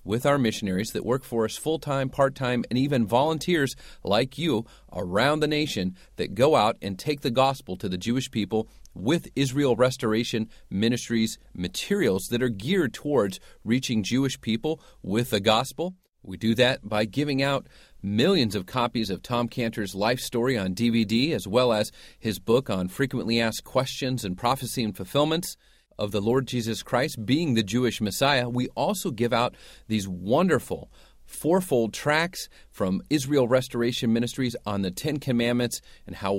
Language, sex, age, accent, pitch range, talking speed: English, male, 40-59, American, 105-135 Hz, 165 wpm